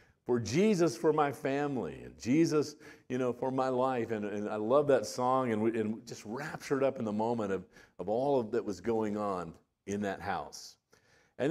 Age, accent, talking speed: 50-69, American, 205 wpm